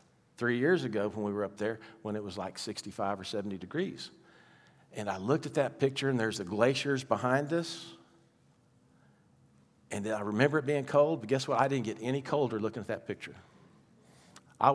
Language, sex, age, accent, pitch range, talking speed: English, male, 50-69, American, 110-140 Hz, 190 wpm